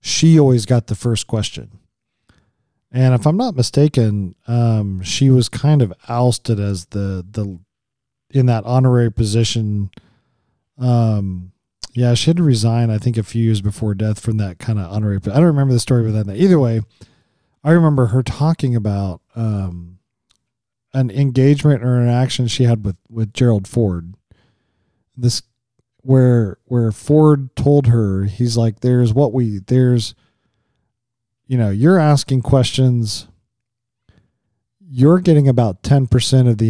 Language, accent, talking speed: English, American, 150 wpm